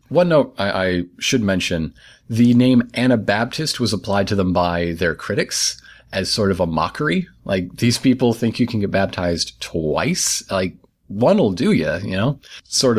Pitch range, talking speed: 90-120 Hz, 175 wpm